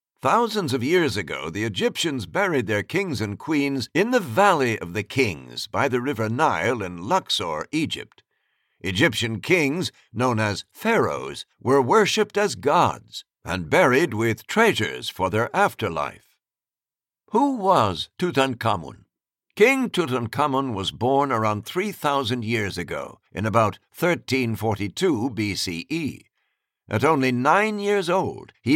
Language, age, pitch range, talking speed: English, 60-79, 110-165 Hz, 125 wpm